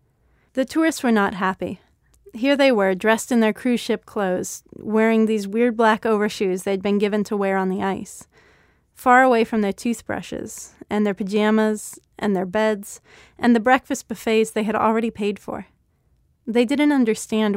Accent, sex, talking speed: American, female, 170 wpm